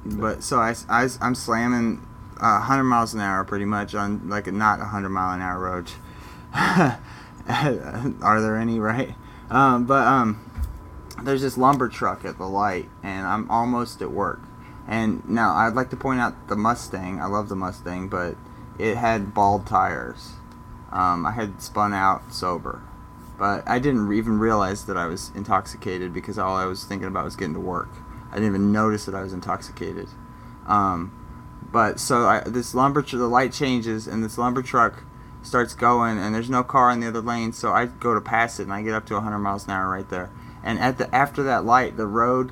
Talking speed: 200 wpm